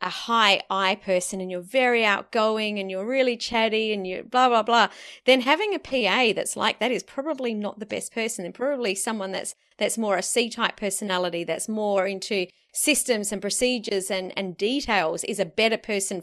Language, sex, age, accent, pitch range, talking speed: English, female, 30-49, Australian, 195-245 Hz, 195 wpm